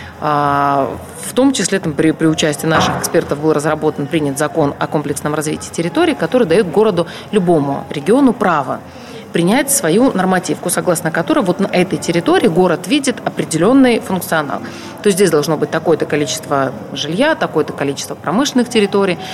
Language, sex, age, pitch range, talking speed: Russian, female, 30-49, 150-200 Hz, 150 wpm